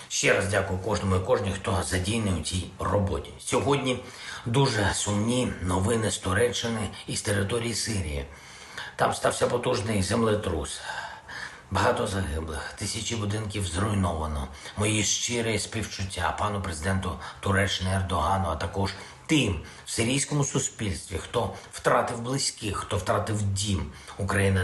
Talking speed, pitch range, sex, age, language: 120 wpm, 85-105 Hz, male, 50-69, Ukrainian